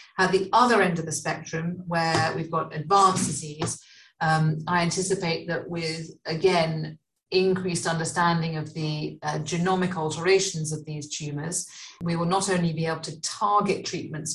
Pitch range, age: 155-185 Hz, 40-59